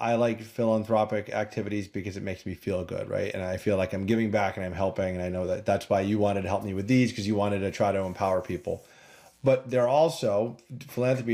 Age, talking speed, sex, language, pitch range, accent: 30-49, 245 wpm, male, English, 100-120 Hz, American